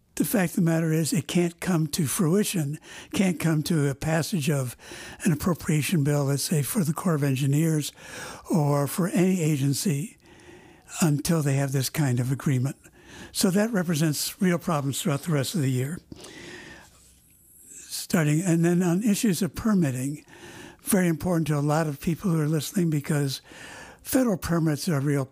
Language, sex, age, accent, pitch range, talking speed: English, male, 60-79, American, 140-175 Hz, 170 wpm